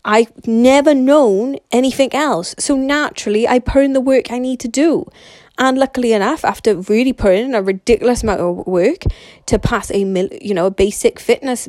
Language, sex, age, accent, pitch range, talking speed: English, female, 20-39, British, 195-250 Hz, 180 wpm